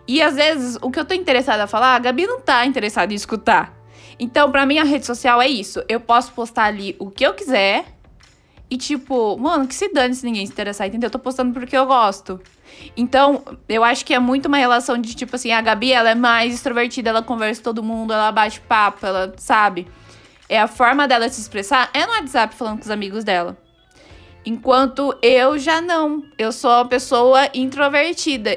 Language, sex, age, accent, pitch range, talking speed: Portuguese, female, 10-29, Brazilian, 225-280 Hz, 210 wpm